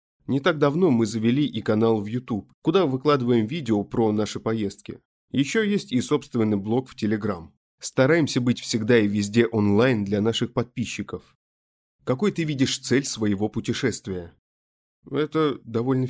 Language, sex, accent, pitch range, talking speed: Russian, male, native, 105-135 Hz, 145 wpm